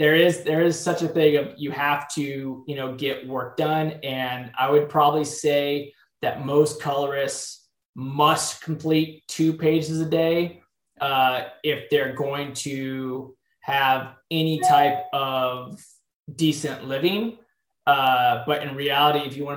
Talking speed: 145 wpm